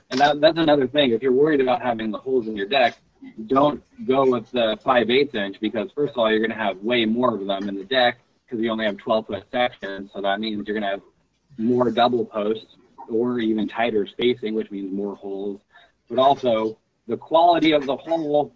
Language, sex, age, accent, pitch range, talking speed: English, male, 30-49, American, 110-135 Hz, 225 wpm